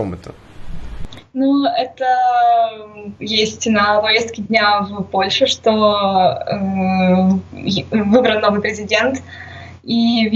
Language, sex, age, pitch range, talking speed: Russian, female, 20-39, 205-240 Hz, 85 wpm